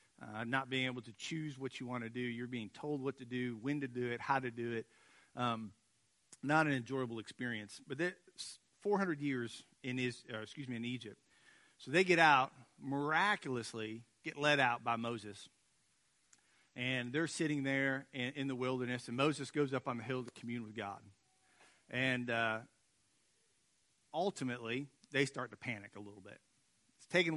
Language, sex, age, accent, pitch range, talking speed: English, male, 40-59, American, 115-140 Hz, 180 wpm